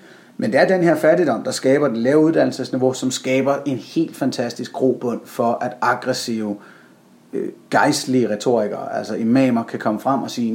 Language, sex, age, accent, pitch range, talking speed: Danish, male, 30-49, native, 115-140 Hz, 165 wpm